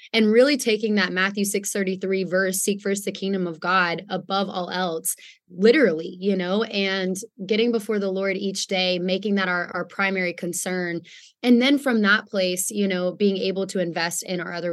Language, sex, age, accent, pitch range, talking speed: English, female, 20-39, American, 180-205 Hz, 190 wpm